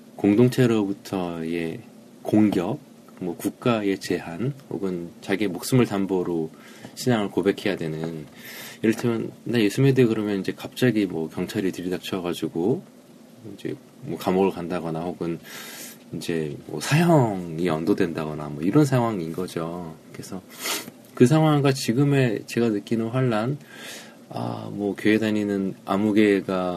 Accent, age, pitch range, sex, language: native, 20-39, 85-110 Hz, male, Korean